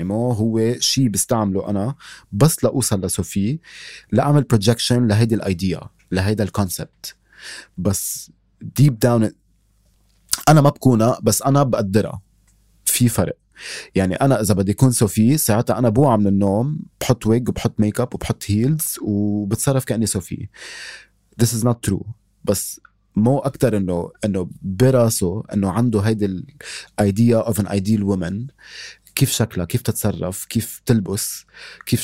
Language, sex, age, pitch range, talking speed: Arabic, male, 30-49, 100-125 Hz, 135 wpm